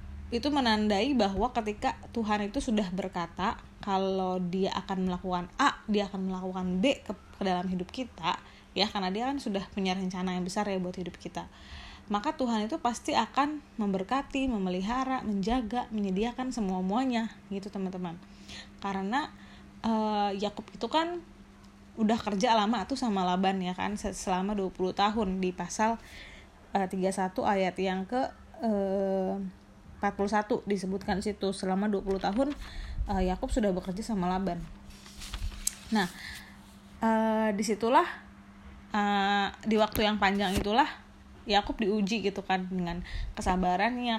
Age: 20-39